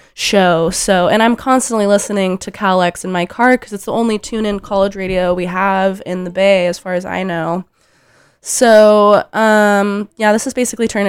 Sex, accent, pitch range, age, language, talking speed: female, American, 175-210 Hz, 20-39, English, 195 wpm